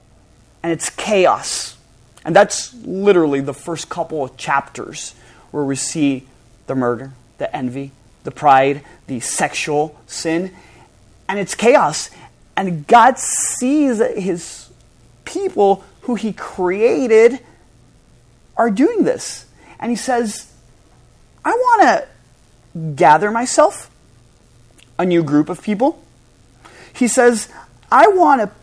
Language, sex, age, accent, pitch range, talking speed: English, male, 30-49, American, 165-250 Hz, 115 wpm